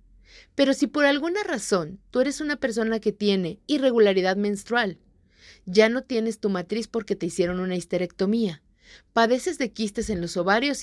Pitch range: 190-260 Hz